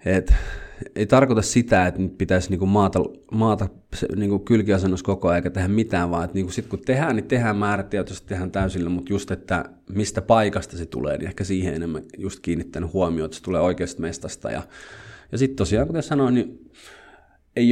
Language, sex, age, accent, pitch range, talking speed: Finnish, male, 30-49, native, 90-110 Hz, 180 wpm